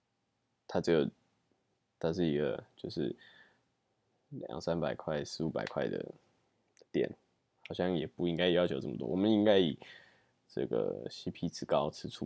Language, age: Chinese, 10-29